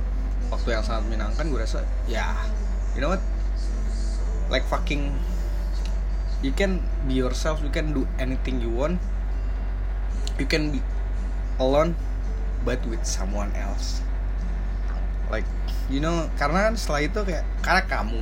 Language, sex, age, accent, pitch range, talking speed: Indonesian, male, 20-39, native, 90-120 Hz, 130 wpm